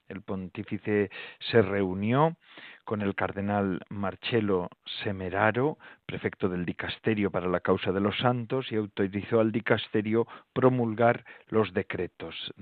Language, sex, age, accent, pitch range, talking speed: Spanish, male, 40-59, Spanish, 100-120 Hz, 120 wpm